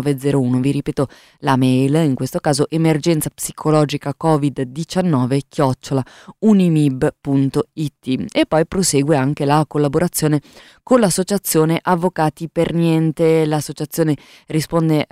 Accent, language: native, Italian